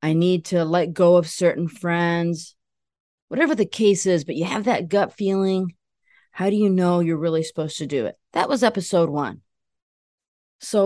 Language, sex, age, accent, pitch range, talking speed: English, female, 30-49, American, 165-245 Hz, 180 wpm